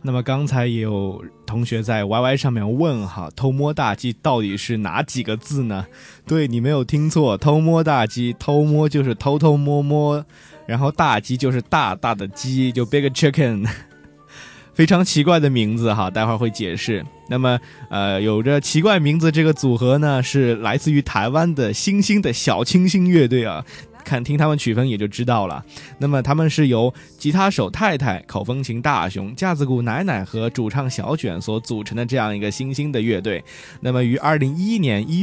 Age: 20-39